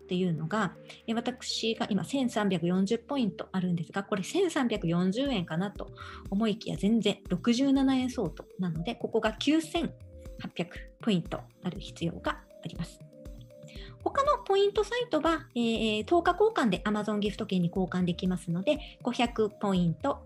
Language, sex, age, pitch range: Japanese, male, 40-59, 185-290 Hz